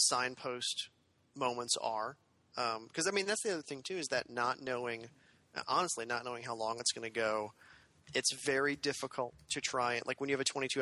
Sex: male